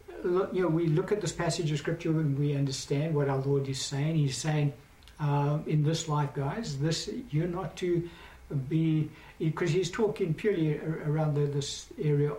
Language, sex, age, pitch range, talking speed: English, male, 60-79, 140-170 Hz, 180 wpm